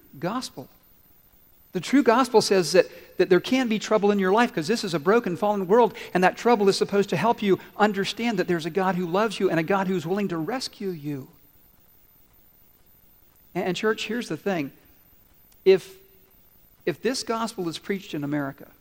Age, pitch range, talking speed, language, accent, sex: 50-69, 170-220 Hz, 190 wpm, English, American, male